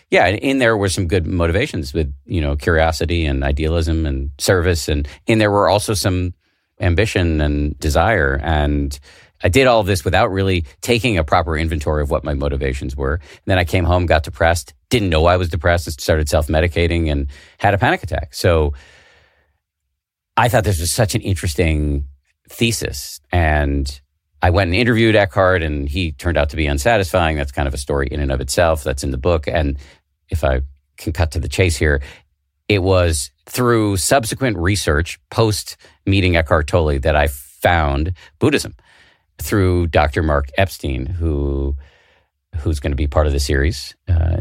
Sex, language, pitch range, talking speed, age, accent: male, English, 70-90 Hz, 175 wpm, 50-69, American